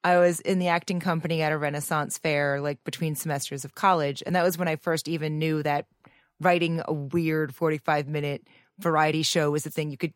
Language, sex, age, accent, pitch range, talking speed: English, female, 30-49, American, 150-190 Hz, 205 wpm